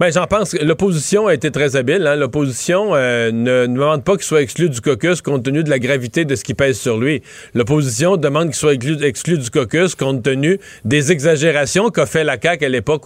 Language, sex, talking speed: French, male, 230 wpm